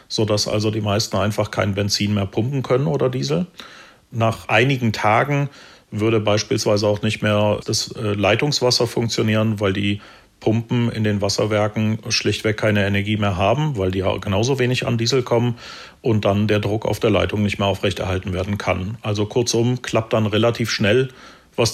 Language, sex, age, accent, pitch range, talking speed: German, male, 40-59, German, 105-115 Hz, 170 wpm